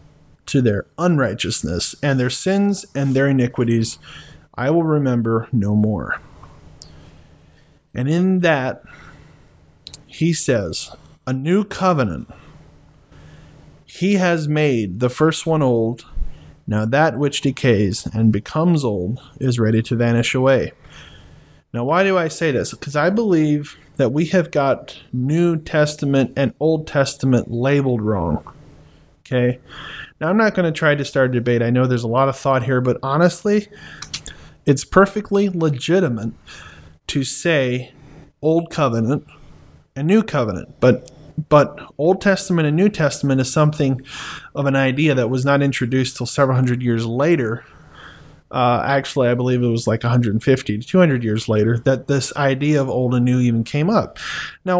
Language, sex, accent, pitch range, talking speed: English, male, American, 120-160 Hz, 150 wpm